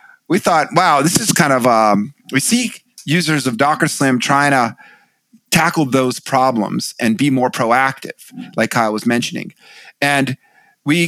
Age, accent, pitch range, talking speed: 30-49, American, 120-145 Hz, 155 wpm